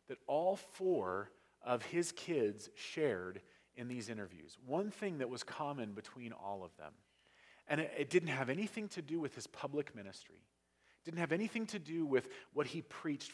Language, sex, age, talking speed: English, male, 30-49, 185 wpm